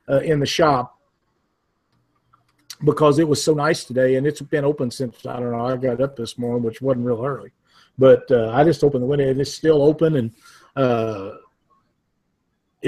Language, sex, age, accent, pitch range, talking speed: English, male, 50-69, American, 150-200 Hz, 185 wpm